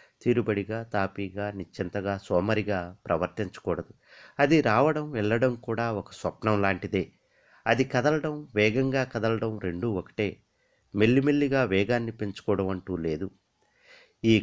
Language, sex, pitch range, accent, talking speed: Telugu, male, 100-135 Hz, native, 95 wpm